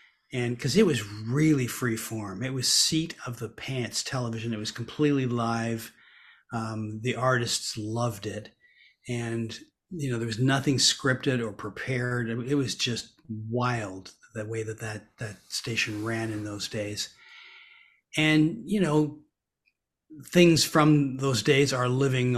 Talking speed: 145 wpm